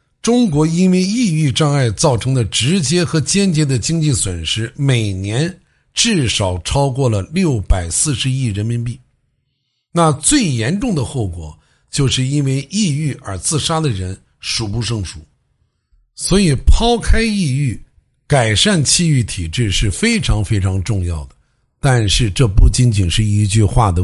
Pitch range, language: 110-155 Hz, English